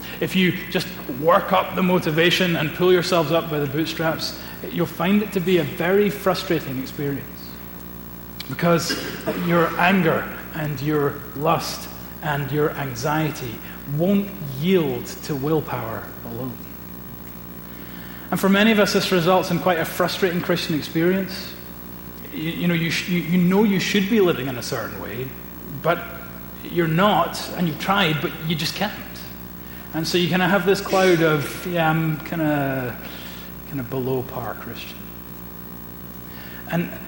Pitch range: 110-180 Hz